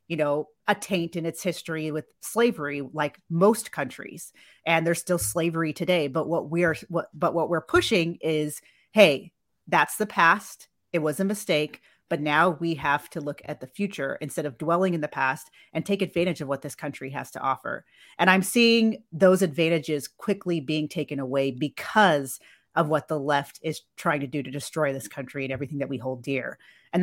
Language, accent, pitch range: English, American, 150-185 Hz